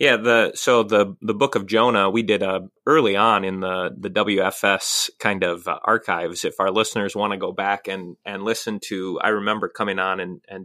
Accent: American